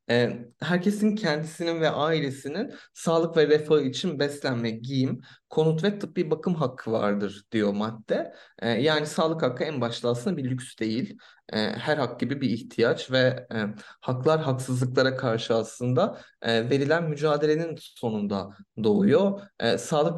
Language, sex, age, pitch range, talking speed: Turkish, male, 30-49, 115-160 Hz, 145 wpm